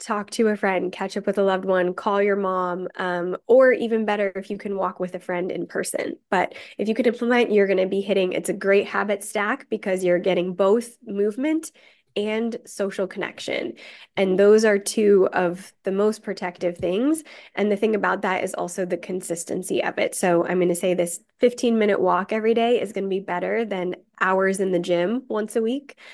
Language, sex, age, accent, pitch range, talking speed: English, female, 20-39, American, 185-215 Hz, 215 wpm